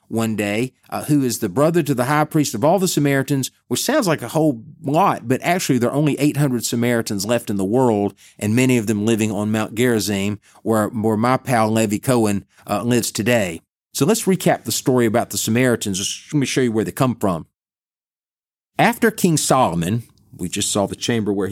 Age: 40-59